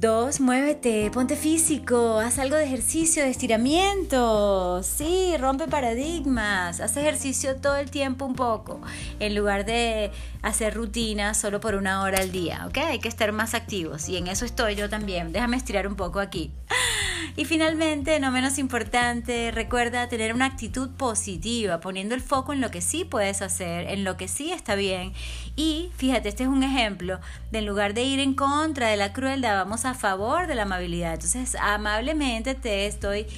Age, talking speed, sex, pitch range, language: 30-49, 180 wpm, female, 205-270 Hz, English